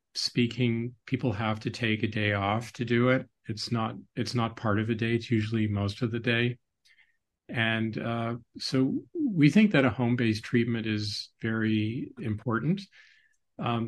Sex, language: male, English